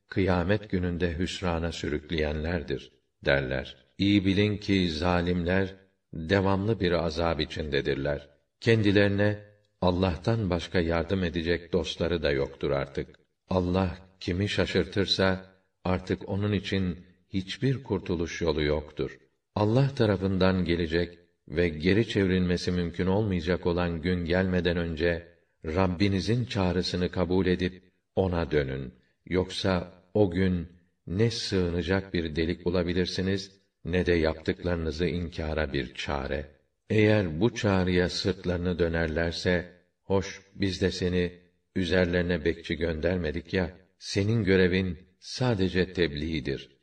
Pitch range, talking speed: 85-95 Hz, 105 wpm